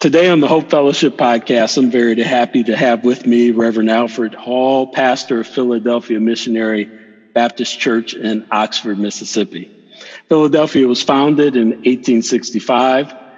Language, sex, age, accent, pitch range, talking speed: English, male, 50-69, American, 120-150 Hz, 135 wpm